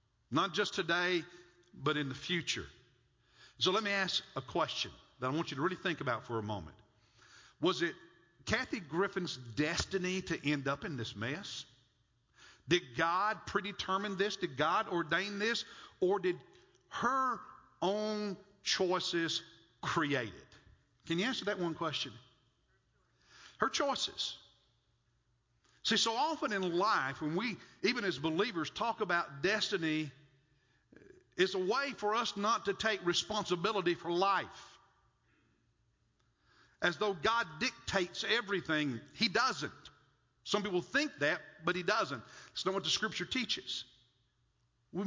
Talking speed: 135 wpm